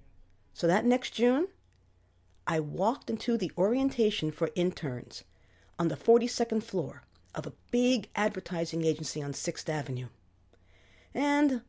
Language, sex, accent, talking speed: English, female, American, 125 wpm